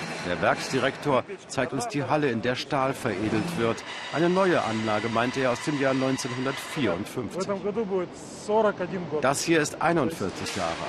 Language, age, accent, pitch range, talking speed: German, 60-79, German, 105-150 Hz, 140 wpm